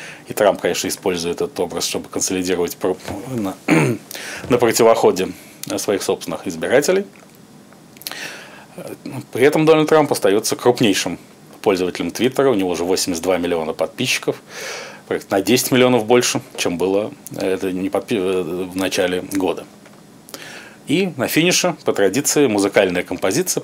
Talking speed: 110 wpm